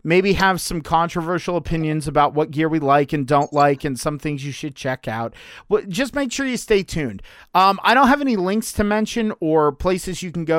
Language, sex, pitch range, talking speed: English, male, 145-185 Hz, 220 wpm